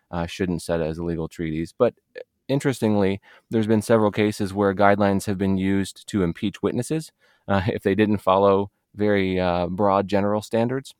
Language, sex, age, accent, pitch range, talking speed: English, male, 30-49, American, 90-110 Hz, 170 wpm